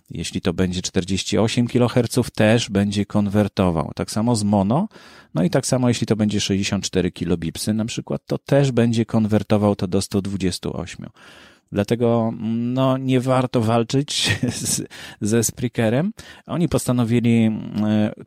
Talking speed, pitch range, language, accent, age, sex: 140 wpm, 95-120 Hz, Polish, native, 30-49, male